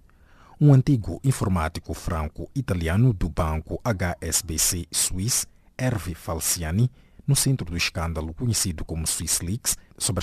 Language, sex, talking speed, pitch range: English, male, 105 wpm, 80-115 Hz